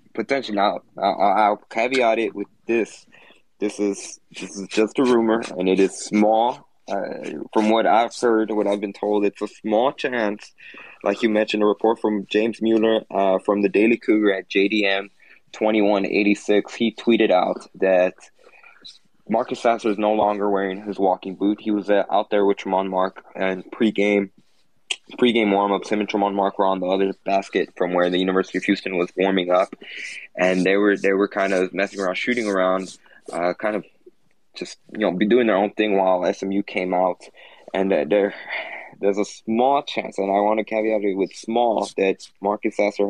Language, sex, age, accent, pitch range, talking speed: English, male, 20-39, American, 95-110 Hz, 185 wpm